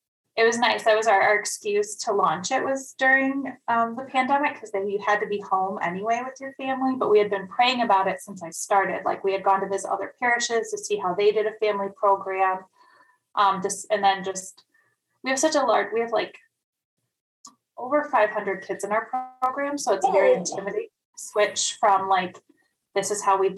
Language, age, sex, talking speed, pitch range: English, 10-29, female, 215 wpm, 195-250 Hz